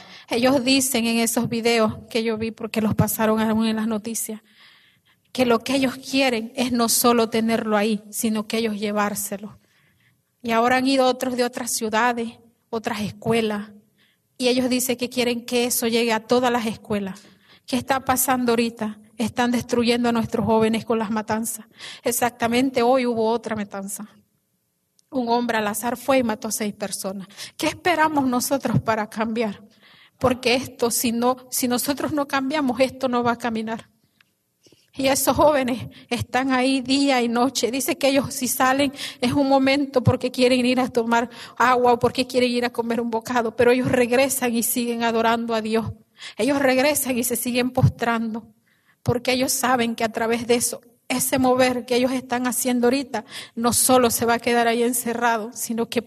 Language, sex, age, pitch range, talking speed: English, female, 30-49, 225-255 Hz, 175 wpm